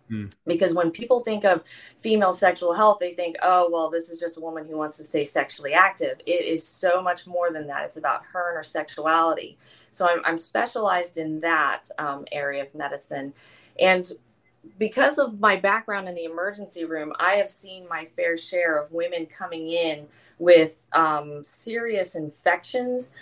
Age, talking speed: 30-49, 180 wpm